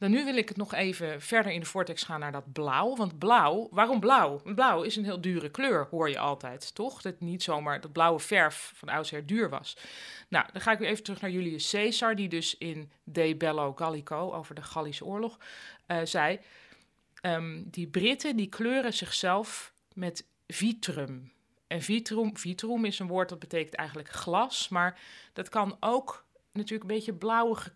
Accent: Dutch